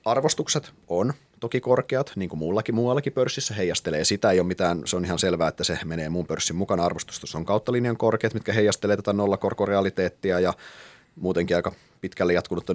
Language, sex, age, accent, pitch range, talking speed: Finnish, male, 30-49, native, 90-115 Hz, 175 wpm